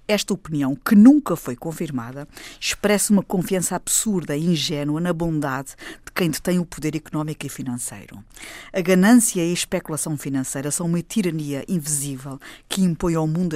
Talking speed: 160 wpm